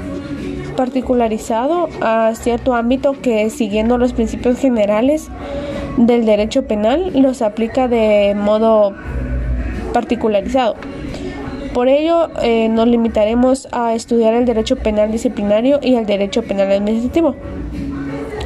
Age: 20-39